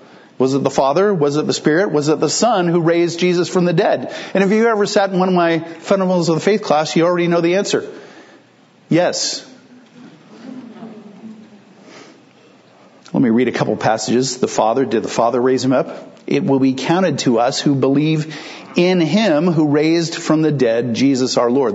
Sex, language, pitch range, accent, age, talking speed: male, English, 130-180 Hz, American, 50-69, 195 wpm